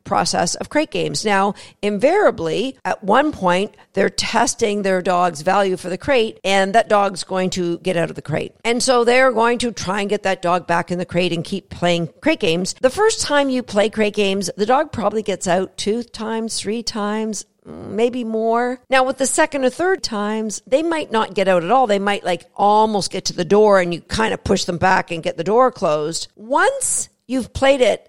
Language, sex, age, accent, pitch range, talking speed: English, female, 50-69, American, 180-250 Hz, 220 wpm